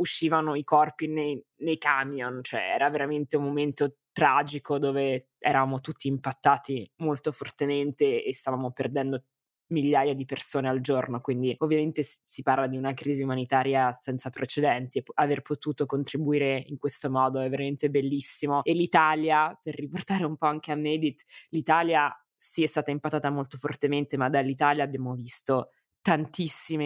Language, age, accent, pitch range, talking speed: Italian, 20-39, native, 135-150 Hz, 150 wpm